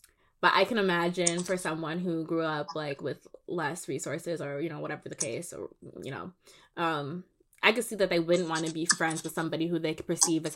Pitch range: 160-190 Hz